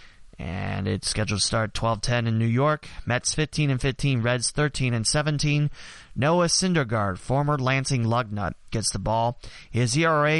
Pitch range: 110-155 Hz